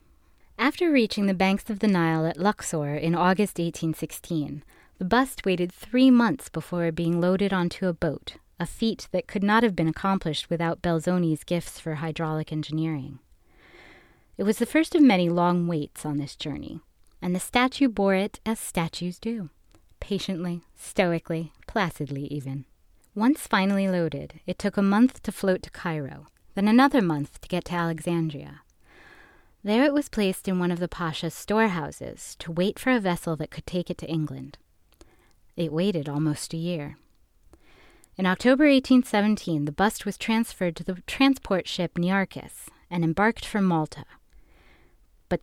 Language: English